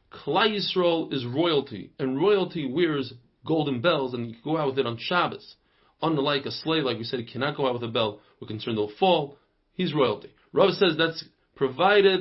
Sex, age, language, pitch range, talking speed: male, 40-59, English, 130-175 Hz, 200 wpm